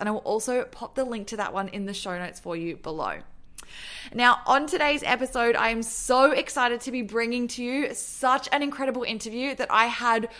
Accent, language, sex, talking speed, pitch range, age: Australian, English, female, 215 wpm, 210-245 Hz, 20-39